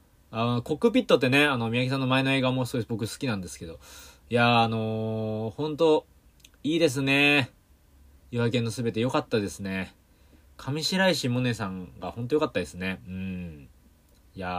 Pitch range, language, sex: 85-130 Hz, Japanese, male